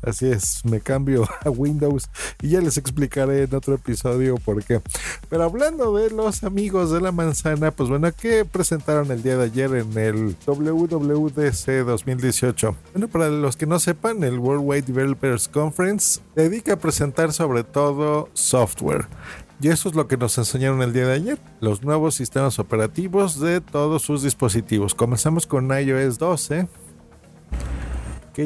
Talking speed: 165 wpm